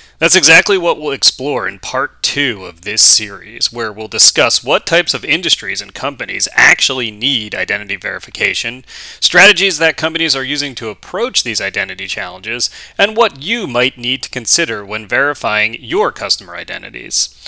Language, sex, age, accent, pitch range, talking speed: English, male, 30-49, American, 115-160 Hz, 160 wpm